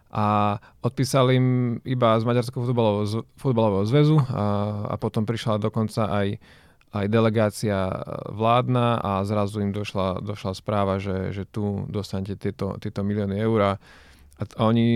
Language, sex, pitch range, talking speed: Slovak, male, 105-120 Hz, 130 wpm